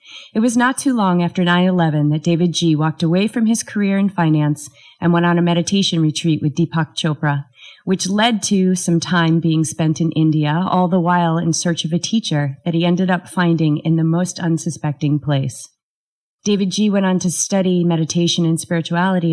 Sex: female